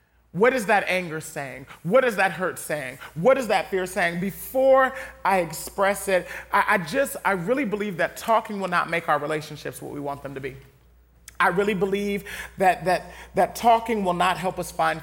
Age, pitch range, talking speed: 30-49, 150-200 Hz, 195 wpm